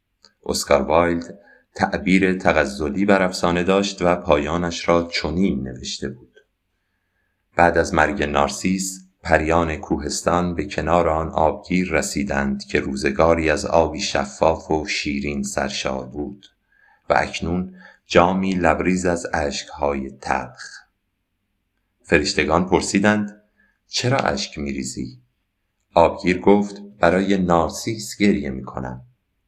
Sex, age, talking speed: male, 50-69, 100 wpm